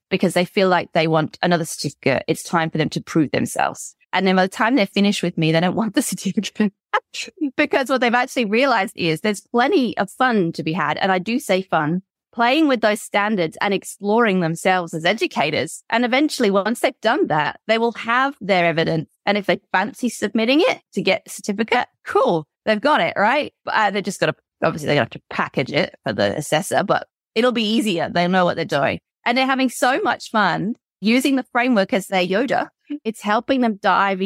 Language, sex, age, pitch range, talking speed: English, female, 20-39, 180-240 Hz, 215 wpm